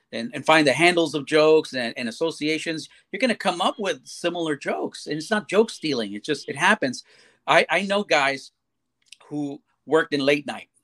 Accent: American